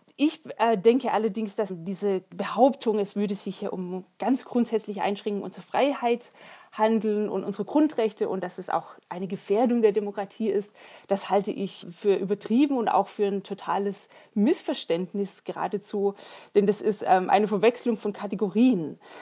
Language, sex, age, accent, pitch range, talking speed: German, female, 20-39, German, 195-230 Hz, 150 wpm